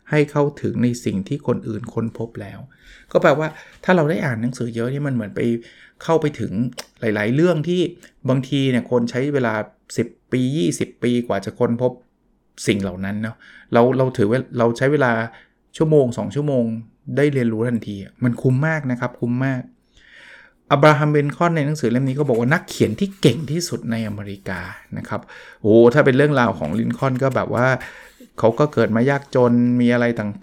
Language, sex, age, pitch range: Thai, male, 20-39, 115-140 Hz